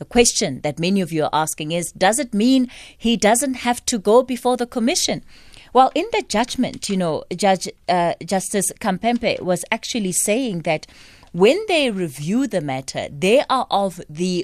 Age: 20-39